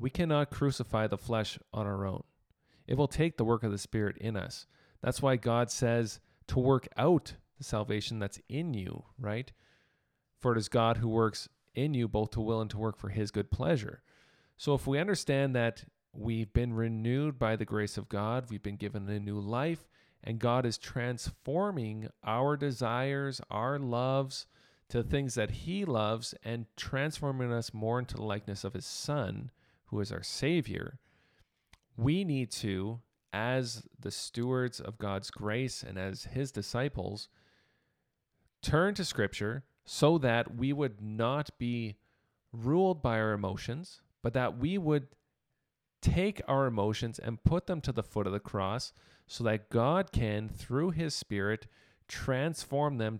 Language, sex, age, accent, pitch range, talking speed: English, male, 40-59, American, 110-135 Hz, 165 wpm